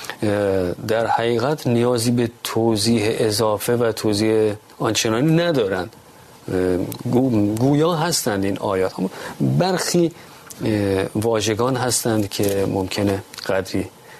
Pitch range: 105-135 Hz